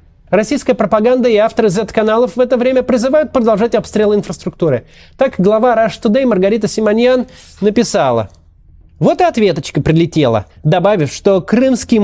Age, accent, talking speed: 30-49, native, 130 wpm